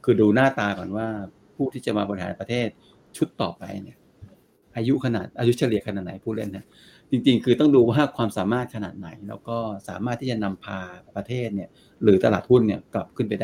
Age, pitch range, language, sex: 60-79, 100-120 Hz, Thai, male